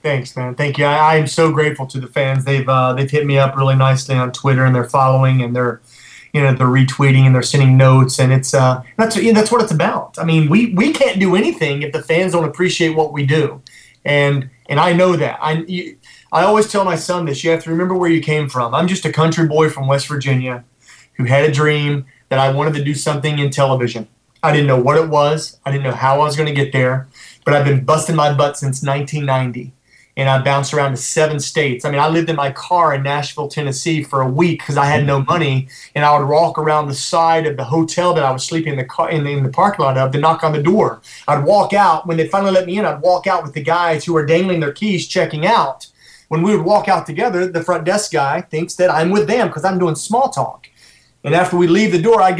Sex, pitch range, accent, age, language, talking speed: male, 135-170 Hz, American, 30-49, English, 260 wpm